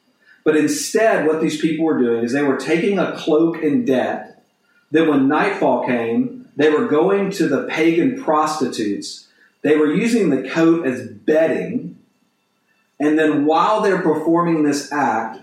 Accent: American